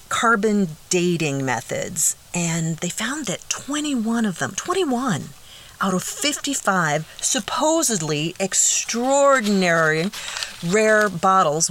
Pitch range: 155-225 Hz